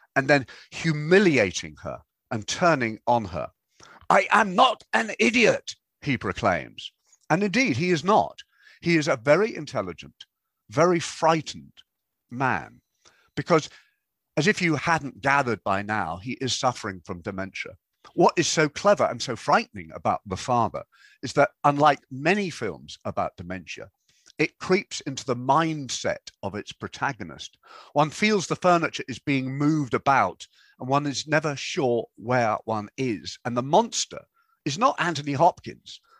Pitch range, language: 110-155 Hz, English